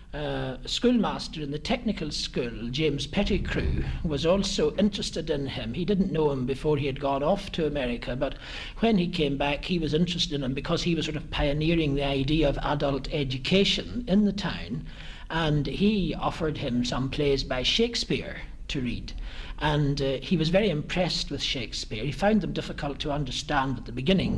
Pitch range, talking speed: 140-180 Hz, 185 wpm